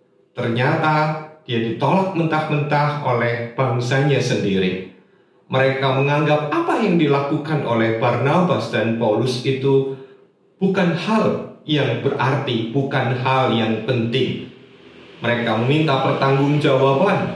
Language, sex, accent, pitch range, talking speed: Indonesian, male, native, 120-150 Hz, 95 wpm